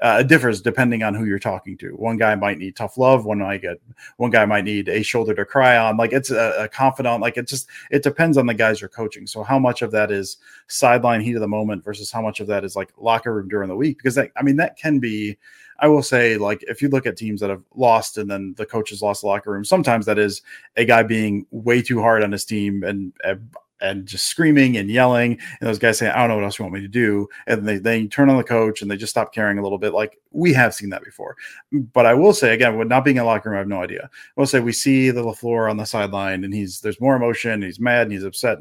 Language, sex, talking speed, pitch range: English, male, 285 wpm, 105-130 Hz